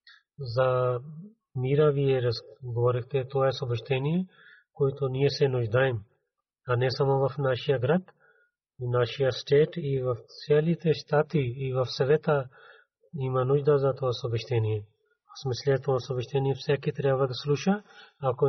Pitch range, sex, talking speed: 130-155 Hz, male, 135 wpm